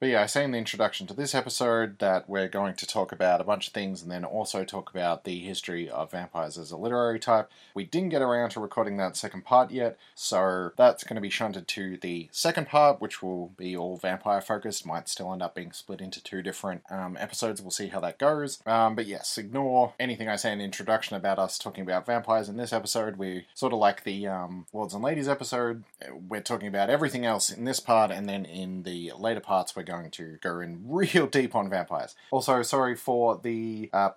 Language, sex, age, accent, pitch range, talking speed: English, male, 30-49, Australian, 95-125 Hz, 230 wpm